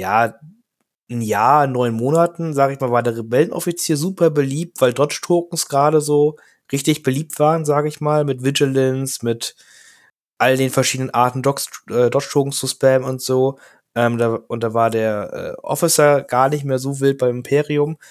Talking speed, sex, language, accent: 170 wpm, male, German, German